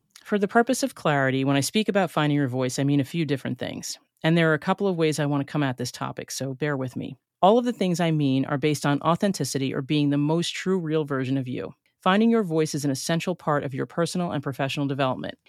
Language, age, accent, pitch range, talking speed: English, 40-59, American, 135-180 Hz, 265 wpm